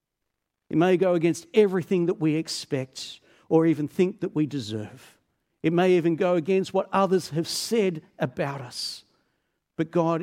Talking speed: 160 wpm